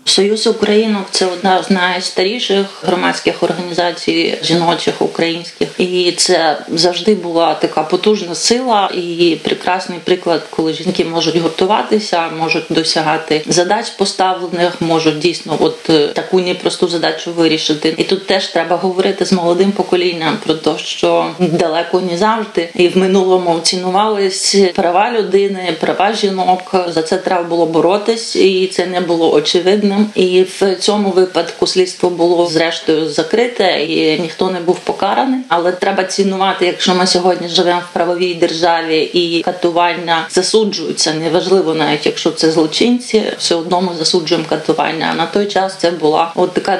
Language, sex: Ukrainian, female